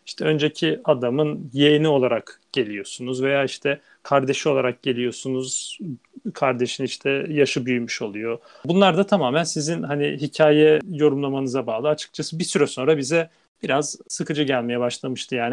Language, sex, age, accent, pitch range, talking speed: Turkish, male, 40-59, native, 135-170 Hz, 130 wpm